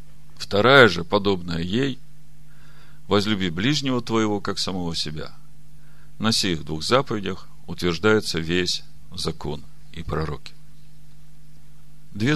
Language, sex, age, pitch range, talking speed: Russian, male, 50-69, 90-150 Hz, 95 wpm